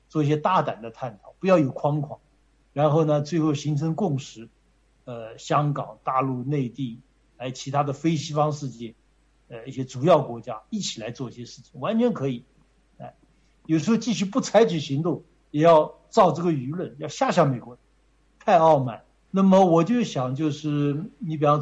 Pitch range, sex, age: 130-155 Hz, male, 60-79